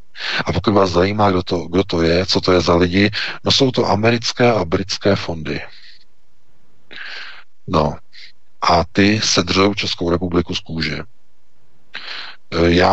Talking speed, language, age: 140 wpm, Czech, 50-69